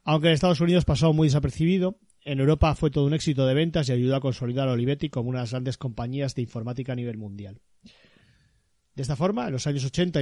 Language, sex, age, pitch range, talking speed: Spanish, male, 30-49, 125-150 Hz, 230 wpm